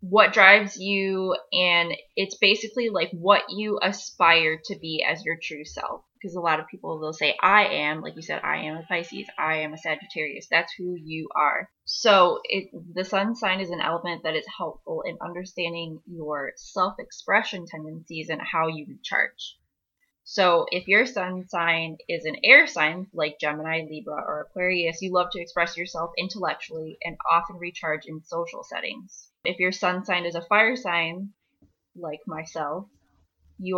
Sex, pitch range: female, 160-190 Hz